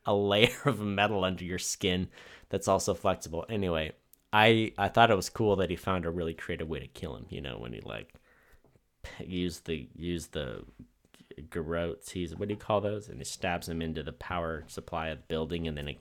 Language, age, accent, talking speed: English, 20-39, American, 215 wpm